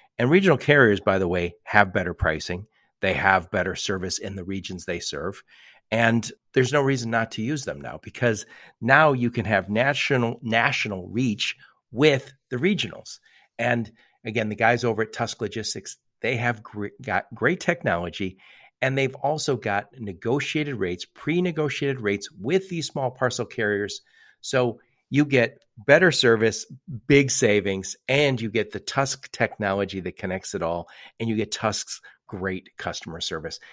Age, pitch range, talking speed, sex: 50-69, 100-135 Hz, 155 wpm, male